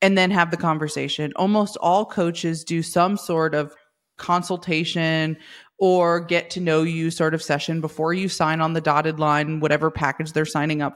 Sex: female